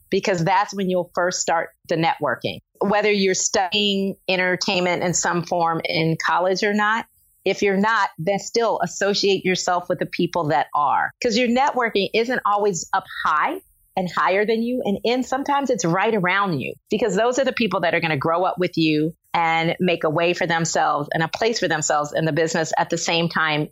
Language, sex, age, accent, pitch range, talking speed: English, female, 40-59, American, 160-205 Hz, 200 wpm